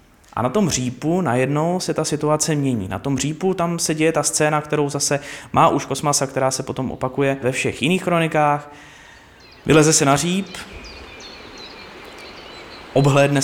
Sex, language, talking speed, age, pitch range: male, Czech, 155 wpm, 20-39, 120-150 Hz